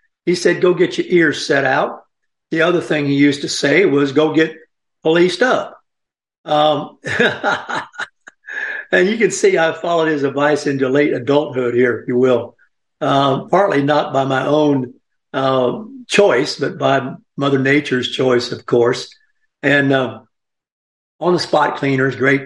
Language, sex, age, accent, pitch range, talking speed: English, male, 60-79, American, 130-155 Hz, 150 wpm